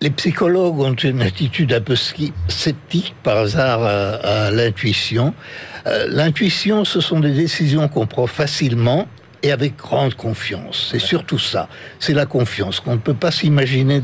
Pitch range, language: 115-150 Hz, French